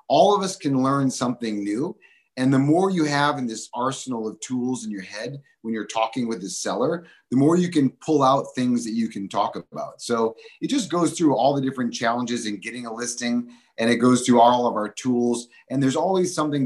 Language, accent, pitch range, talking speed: English, American, 110-140 Hz, 225 wpm